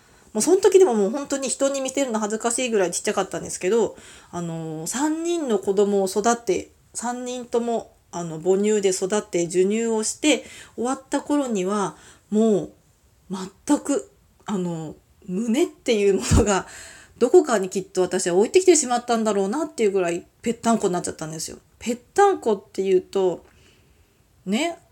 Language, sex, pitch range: Japanese, female, 190-285 Hz